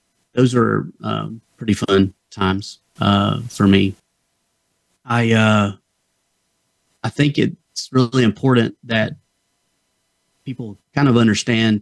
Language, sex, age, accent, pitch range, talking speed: English, male, 30-49, American, 100-110 Hz, 105 wpm